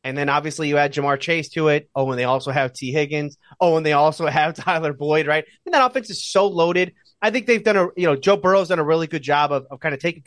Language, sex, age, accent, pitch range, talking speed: English, male, 30-49, American, 135-180 Hz, 290 wpm